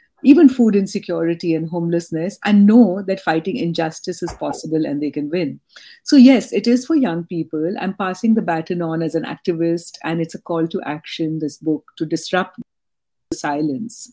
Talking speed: 185 wpm